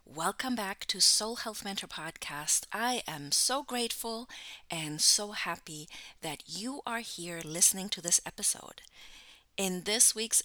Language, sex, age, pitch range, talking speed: English, female, 30-49, 165-220 Hz, 145 wpm